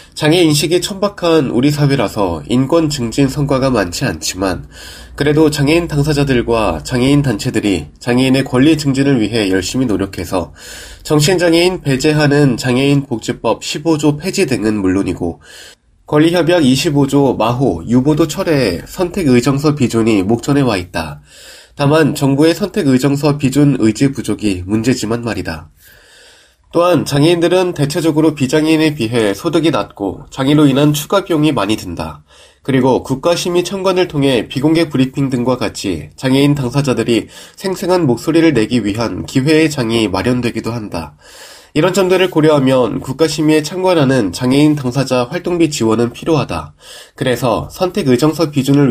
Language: Korean